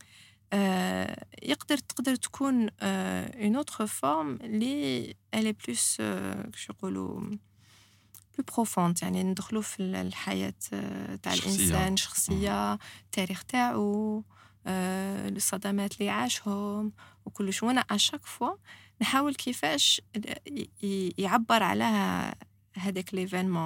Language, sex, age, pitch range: French, female, 20-39, 175-220 Hz